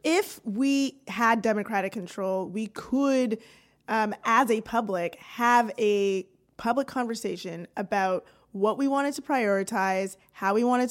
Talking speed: 130 wpm